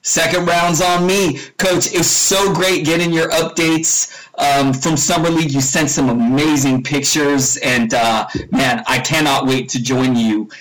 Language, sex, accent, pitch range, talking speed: English, male, American, 140-185 Hz, 165 wpm